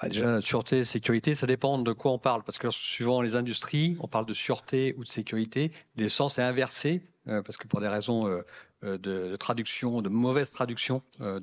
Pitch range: 110-140 Hz